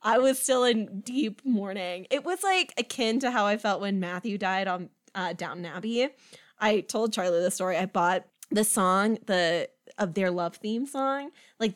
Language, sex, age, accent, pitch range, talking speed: English, female, 20-39, American, 200-265 Hz, 190 wpm